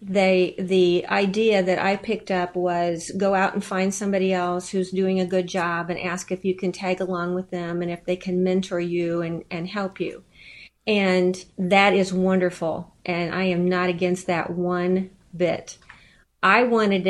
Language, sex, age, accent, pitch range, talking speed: English, female, 40-59, American, 180-200 Hz, 185 wpm